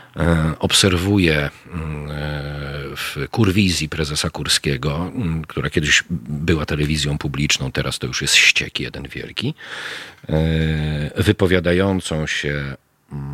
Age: 40-59